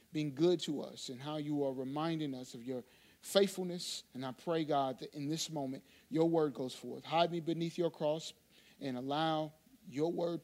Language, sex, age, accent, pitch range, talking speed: English, male, 40-59, American, 150-195 Hz, 195 wpm